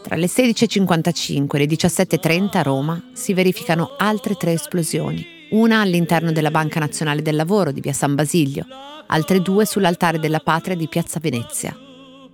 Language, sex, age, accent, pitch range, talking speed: Italian, female, 40-59, native, 150-195 Hz, 155 wpm